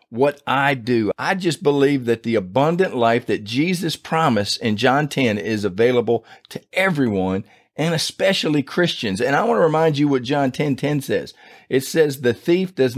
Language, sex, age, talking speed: English, male, 50-69, 180 wpm